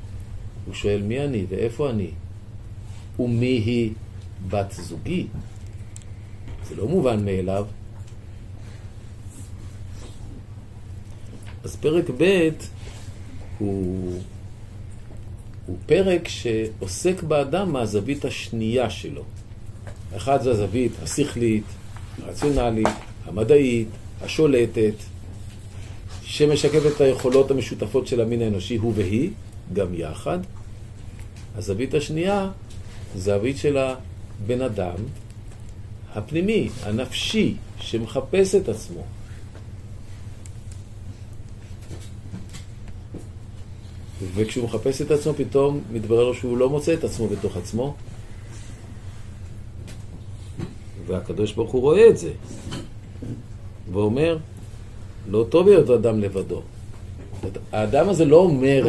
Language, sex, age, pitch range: Hebrew, male, 50-69, 100-115 Hz